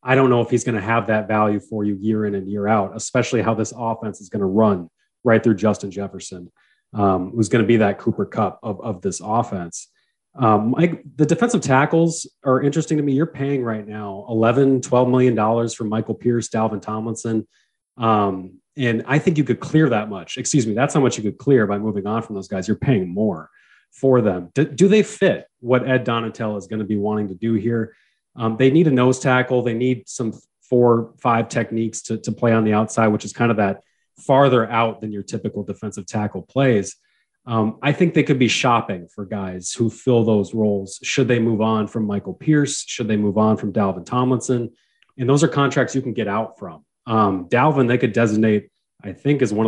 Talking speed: 220 wpm